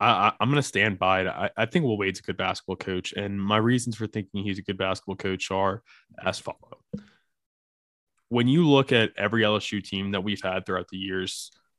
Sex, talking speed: male, 215 wpm